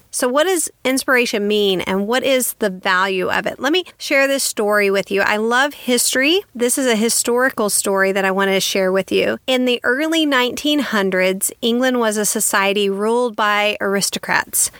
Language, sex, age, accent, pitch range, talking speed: English, female, 40-59, American, 200-255 Hz, 185 wpm